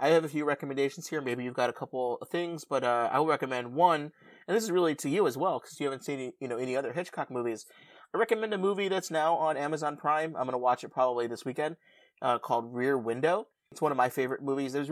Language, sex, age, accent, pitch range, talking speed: English, male, 30-49, American, 120-150 Hz, 260 wpm